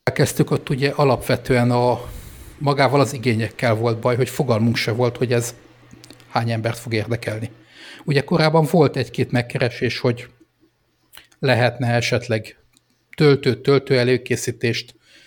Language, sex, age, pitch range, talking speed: Hungarian, male, 60-79, 115-135 Hz, 120 wpm